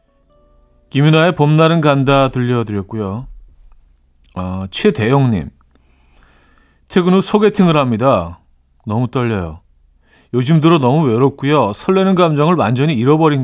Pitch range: 95-135 Hz